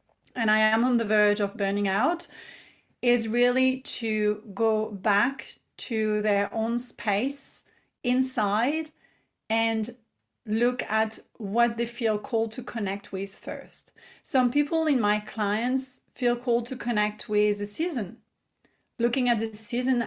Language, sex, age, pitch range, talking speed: English, female, 30-49, 210-240 Hz, 140 wpm